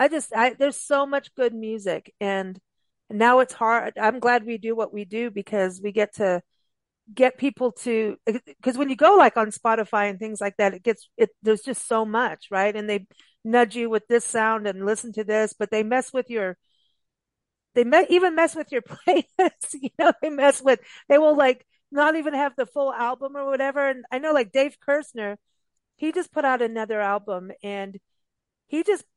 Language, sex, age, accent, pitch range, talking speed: English, female, 40-59, American, 210-270 Hz, 205 wpm